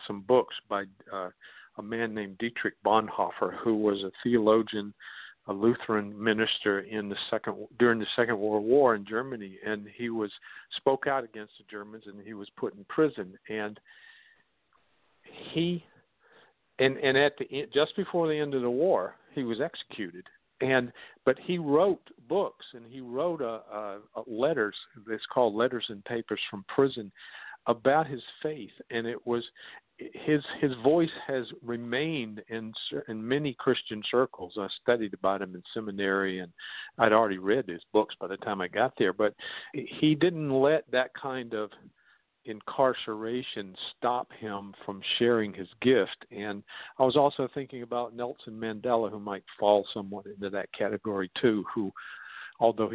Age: 50-69